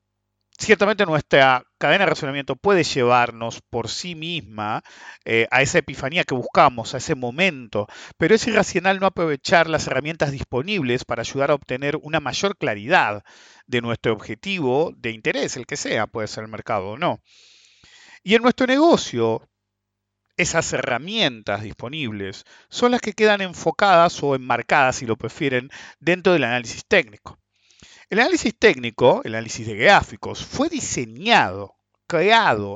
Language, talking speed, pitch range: English, 145 wpm, 115-185 Hz